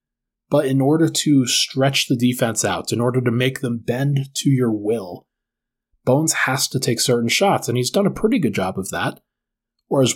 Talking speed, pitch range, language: 200 wpm, 120-145 Hz, English